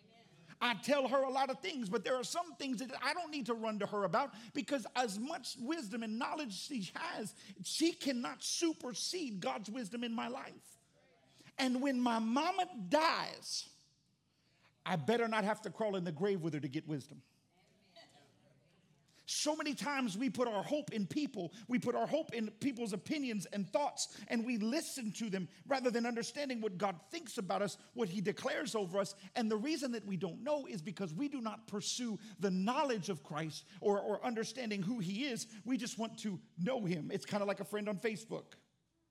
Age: 50-69